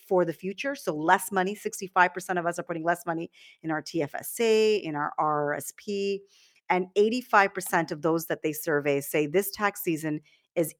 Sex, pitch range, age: female, 150-190 Hz, 40-59